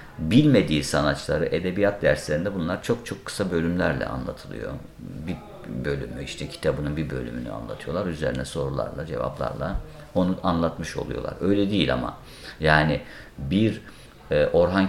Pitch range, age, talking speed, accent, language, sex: 75-95 Hz, 50-69, 120 wpm, native, Turkish, male